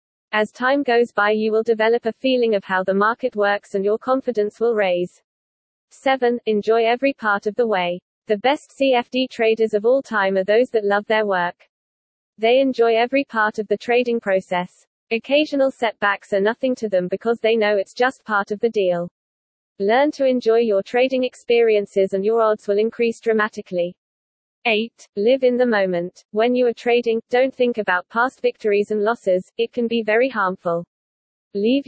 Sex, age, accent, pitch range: female, 40-59, British, 200-240 Hz